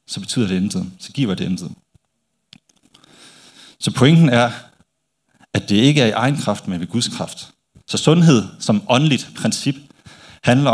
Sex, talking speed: male, 155 wpm